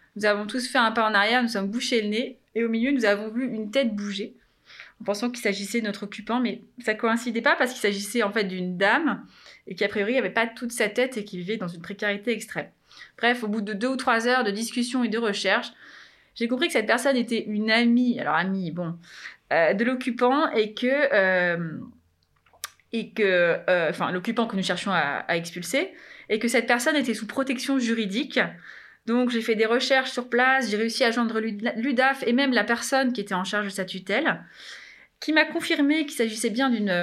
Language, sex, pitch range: French, female, 200-250 Hz